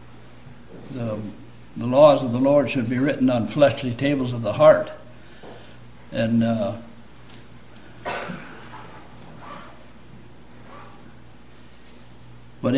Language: English